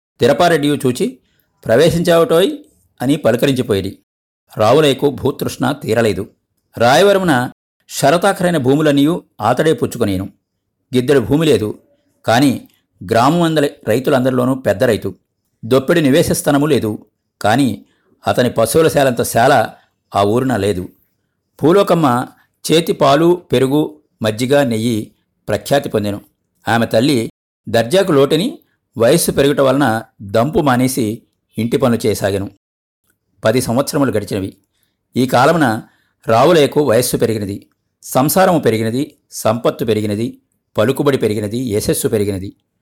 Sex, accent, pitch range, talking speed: male, native, 105-145 Hz, 95 wpm